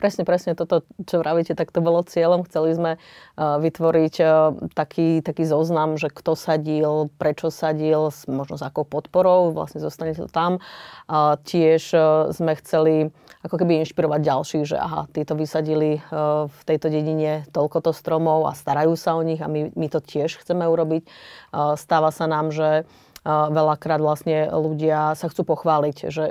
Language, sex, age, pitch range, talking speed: Slovak, female, 30-49, 150-165 Hz, 155 wpm